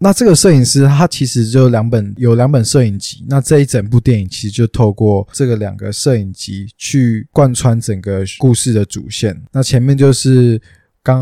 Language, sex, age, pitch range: Chinese, male, 20-39, 105-130 Hz